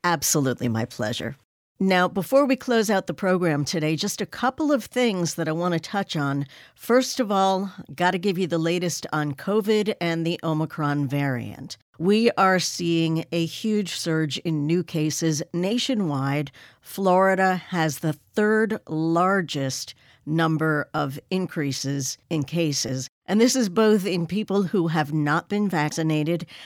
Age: 50-69